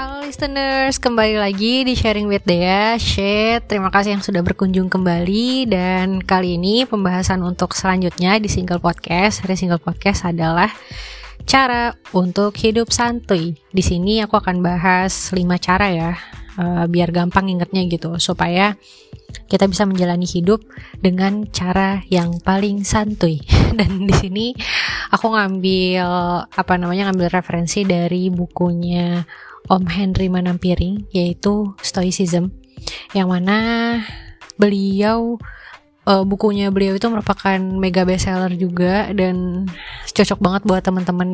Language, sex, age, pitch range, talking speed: Indonesian, female, 20-39, 180-205 Hz, 125 wpm